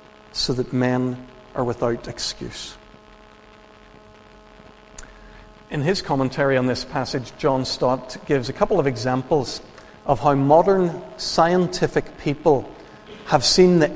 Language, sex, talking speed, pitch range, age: English, male, 115 wpm, 130-160 Hz, 40-59